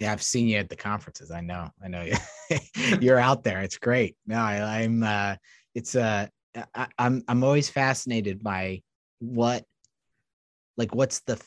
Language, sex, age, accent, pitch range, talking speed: English, male, 20-39, American, 90-115 Hz, 165 wpm